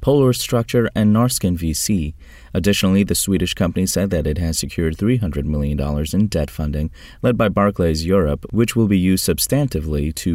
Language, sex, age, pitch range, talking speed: English, male, 30-49, 80-100 Hz, 170 wpm